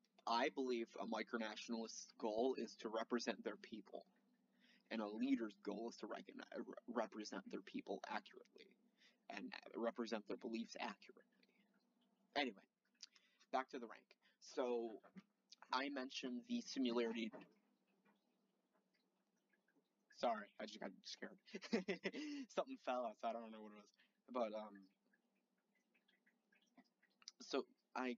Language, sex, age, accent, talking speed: English, male, 20-39, American, 115 wpm